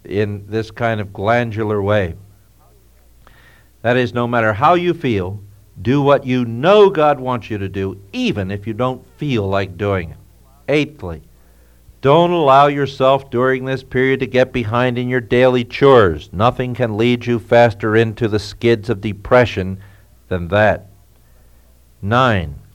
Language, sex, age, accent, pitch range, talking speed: English, male, 60-79, American, 100-130 Hz, 150 wpm